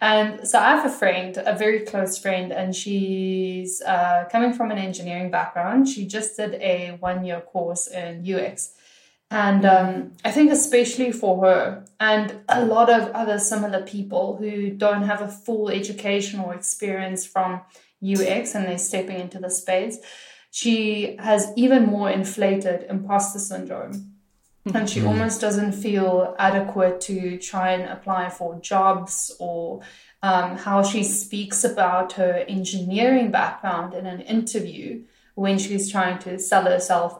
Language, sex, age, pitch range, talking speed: English, female, 10-29, 185-215 Hz, 150 wpm